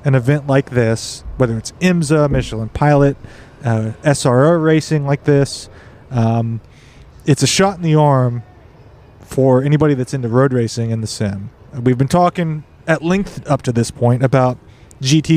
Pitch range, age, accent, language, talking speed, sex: 120-155 Hz, 30-49, American, English, 160 wpm, male